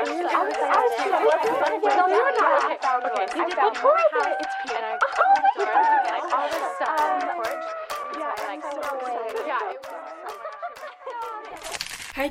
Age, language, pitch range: 20-39, French, 185-220 Hz